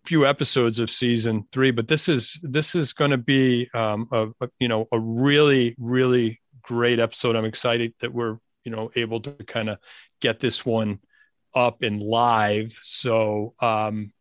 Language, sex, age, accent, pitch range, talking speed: English, male, 40-59, American, 115-135 Hz, 165 wpm